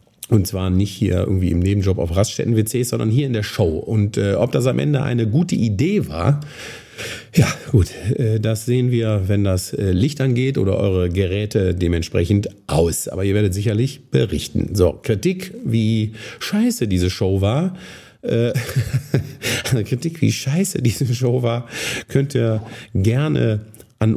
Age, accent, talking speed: 50-69, German, 155 wpm